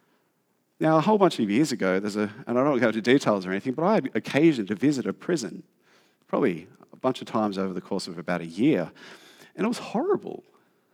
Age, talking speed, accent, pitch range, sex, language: 50-69, 225 wpm, Australian, 100-140 Hz, male, English